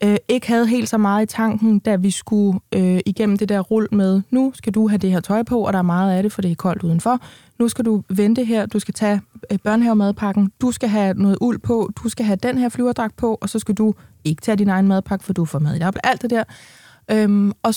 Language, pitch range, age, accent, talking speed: Danish, 195-235 Hz, 20-39, native, 260 wpm